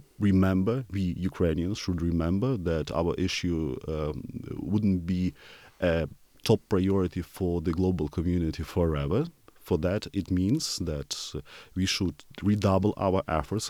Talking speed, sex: 125 wpm, male